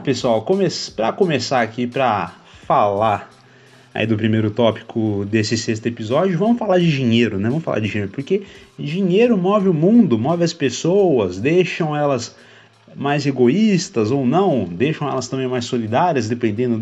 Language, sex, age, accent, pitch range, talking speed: Portuguese, male, 30-49, Brazilian, 105-155 Hz, 145 wpm